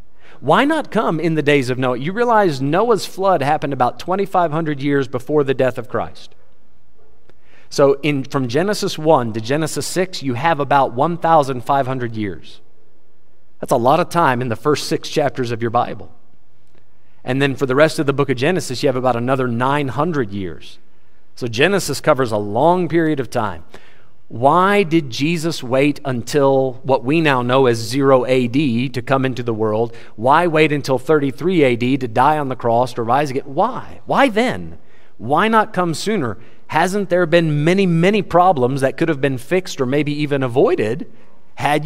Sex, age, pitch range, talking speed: male, 40-59, 130-170 Hz, 175 wpm